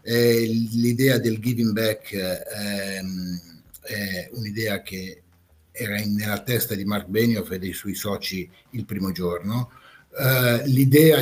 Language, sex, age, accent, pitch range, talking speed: Italian, male, 50-69, native, 100-125 Hz, 120 wpm